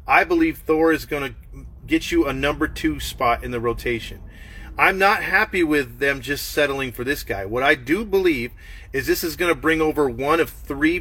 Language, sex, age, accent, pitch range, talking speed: English, male, 30-49, American, 125-175 Hz, 215 wpm